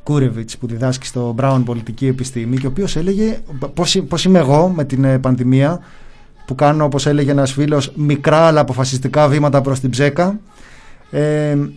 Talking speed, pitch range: 160 wpm, 130-175 Hz